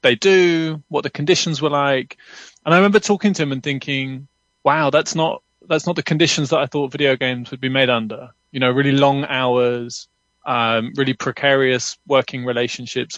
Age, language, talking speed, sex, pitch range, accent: 20-39, English, 185 wpm, male, 125-155 Hz, British